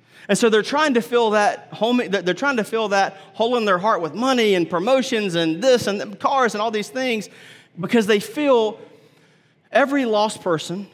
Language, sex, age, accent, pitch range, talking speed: English, male, 30-49, American, 155-215 Hz, 190 wpm